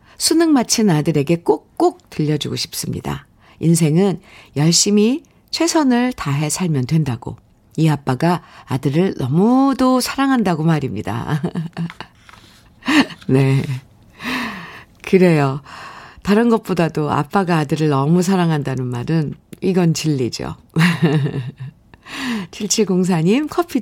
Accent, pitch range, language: native, 150-220 Hz, Korean